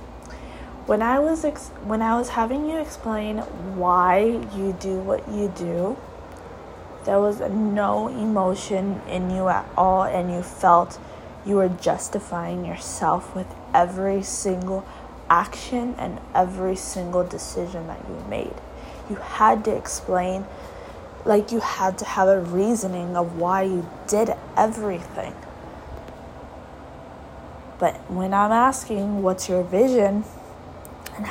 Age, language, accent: 20-39, English, American